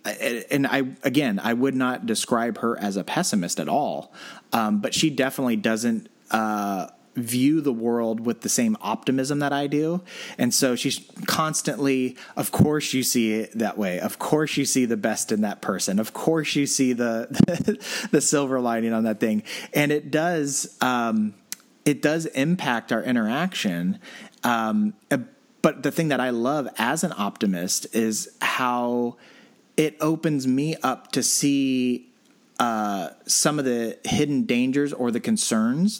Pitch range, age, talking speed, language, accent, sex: 115-155 Hz, 30-49, 160 wpm, English, American, male